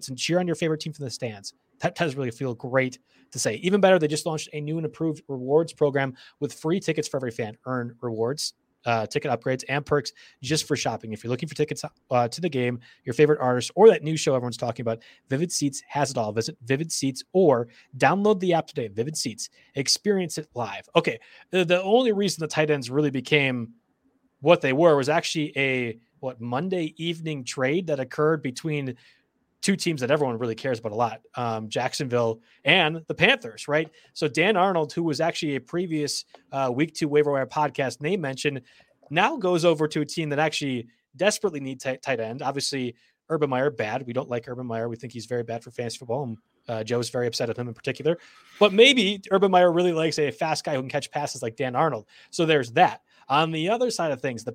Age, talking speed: 30-49, 220 wpm